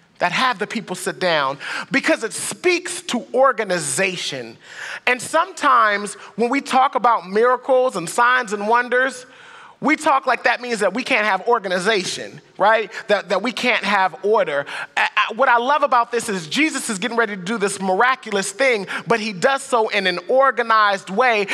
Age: 30-49